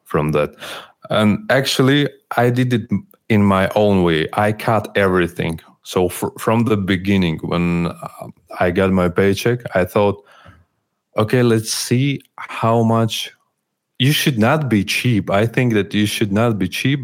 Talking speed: 155 wpm